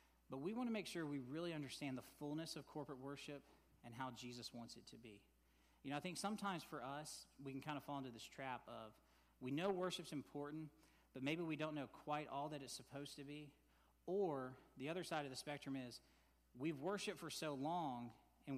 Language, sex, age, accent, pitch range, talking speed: English, male, 40-59, American, 115-145 Hz, 215 wpm